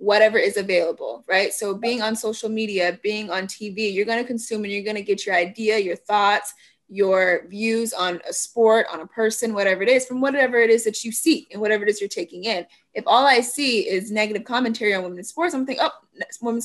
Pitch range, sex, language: 200-240 Hz, female, English